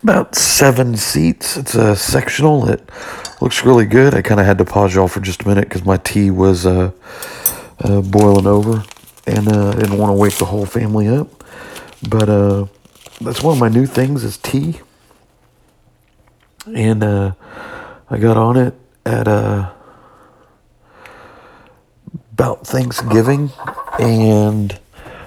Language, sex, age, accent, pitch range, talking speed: English, male, 50-69, American, 100-120 Hz, 145 wpm